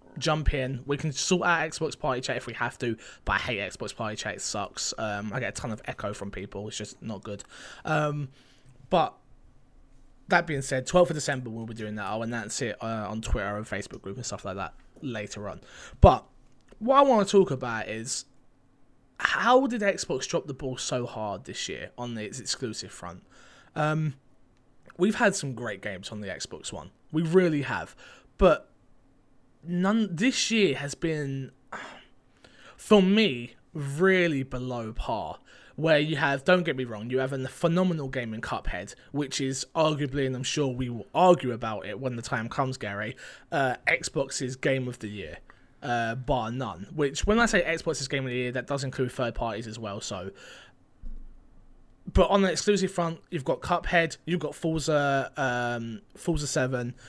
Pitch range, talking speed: 115-160 Hz, 185 wpm